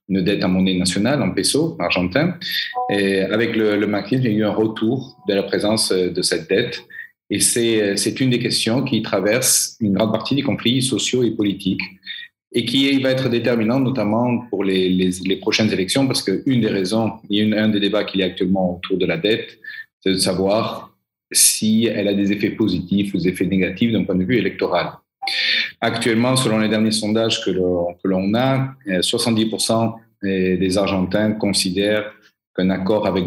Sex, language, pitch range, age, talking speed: male, French, 95-115 Hz, 40-59, 190 wpm